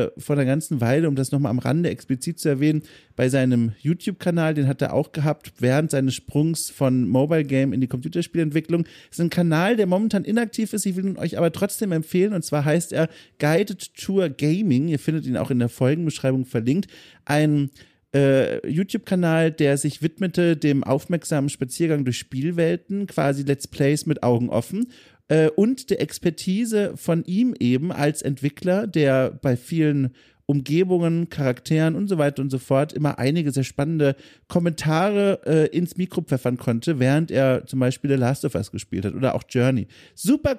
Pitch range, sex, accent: 140-185 Hz, male, German